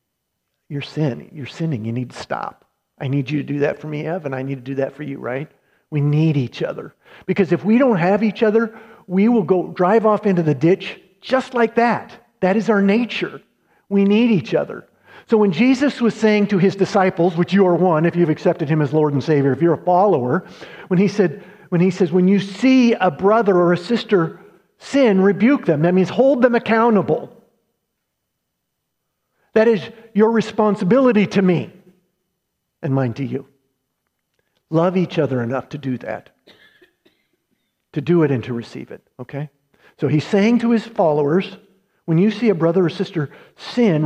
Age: 50-69